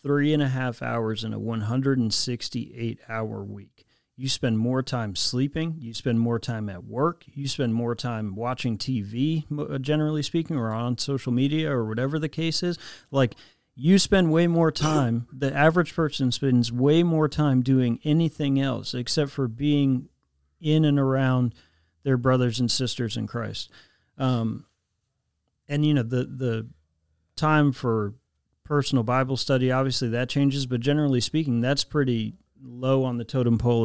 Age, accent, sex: 40-59, American, male